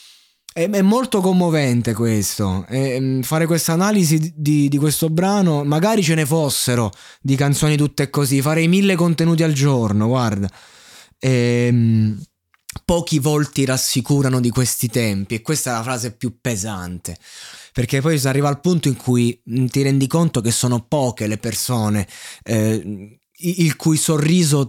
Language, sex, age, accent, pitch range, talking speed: Italian, male, 20-39, native, 115-150 Hz, 145 wpm